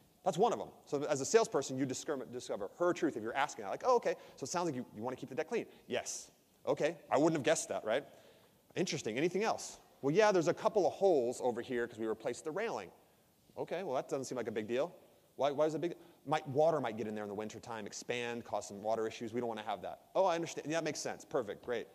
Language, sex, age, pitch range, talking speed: English, male, 30-49, 125-175 Hz, 275 wpm